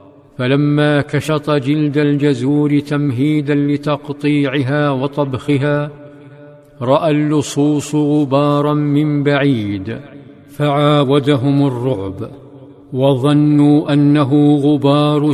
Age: 50-69